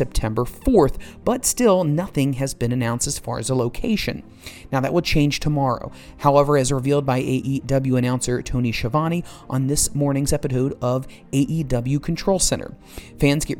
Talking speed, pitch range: 160 wpm, 125-145 Hz